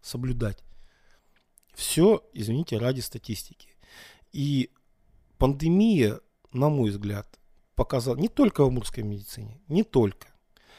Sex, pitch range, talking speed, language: male, 110-135 Hz, 100 wpm, Russian